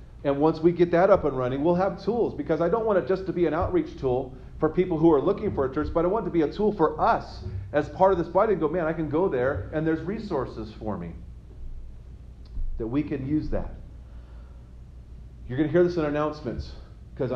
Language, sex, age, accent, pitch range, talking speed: English, male, 40-59, American, 120-175 Hz, 240 wpm